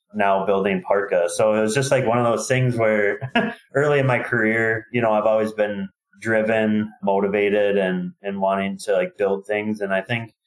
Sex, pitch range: male, 100-115 Hz